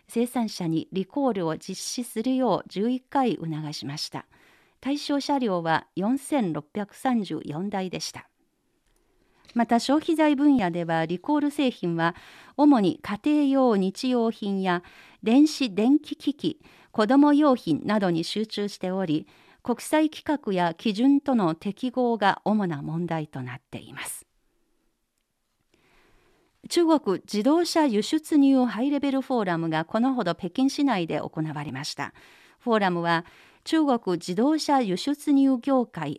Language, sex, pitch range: Japanese, female, 175-275 Hz